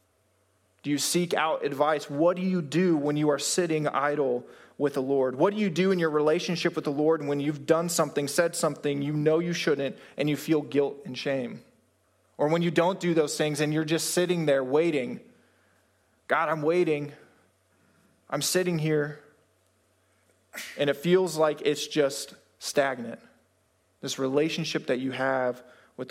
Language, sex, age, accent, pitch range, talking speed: English, male, 20-39, American, 130-170 Hz, 170 wpm